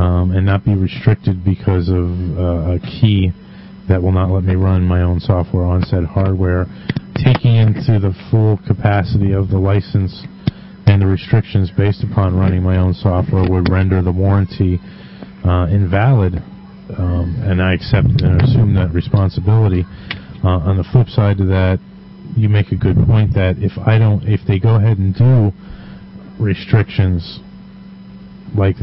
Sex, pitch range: male, 90-110 Hz